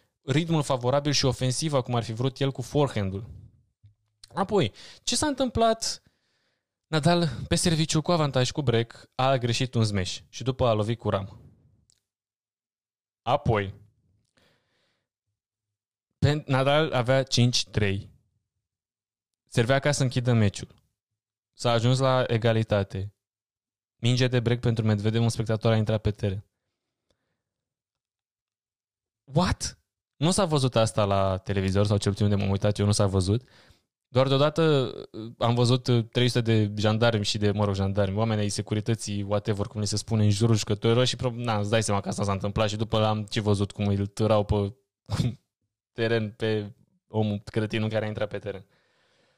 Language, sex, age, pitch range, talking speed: English, male, 20-39, 105-125 Hz, 150 wpm